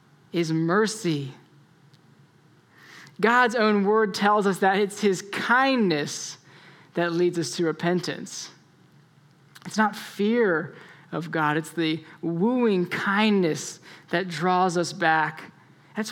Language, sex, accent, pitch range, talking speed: English, male, American, 170-215 Hz, 110 wpm